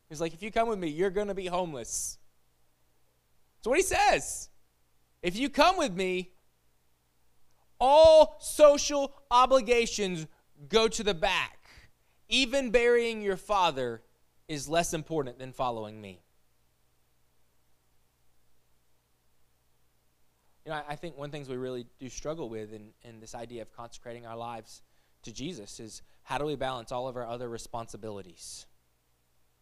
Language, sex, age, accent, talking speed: English, male, 20-39, American, 145 wpm